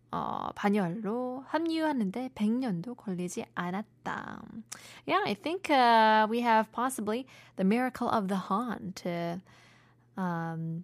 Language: Korean